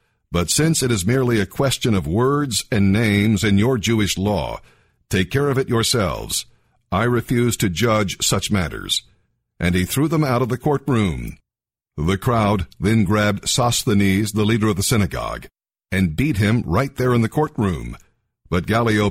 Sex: male